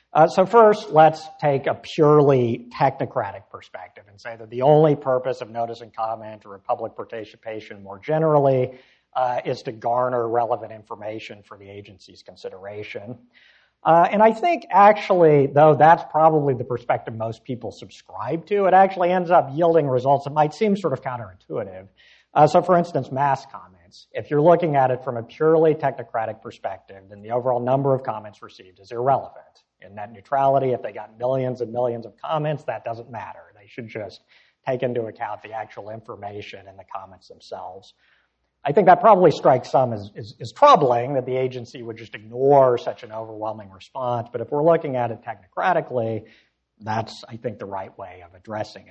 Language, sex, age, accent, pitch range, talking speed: English, male, 50-69, American, 110-150 Hz, 180 wpm